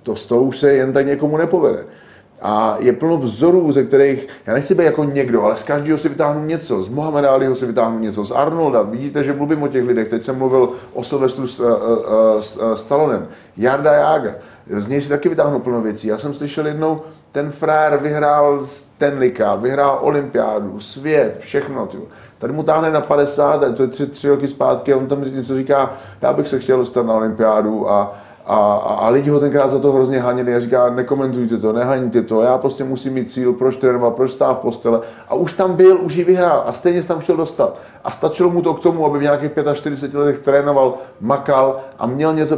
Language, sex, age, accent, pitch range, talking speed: Czech, male, 30-49, native, 125-150 Hz, 205 wpm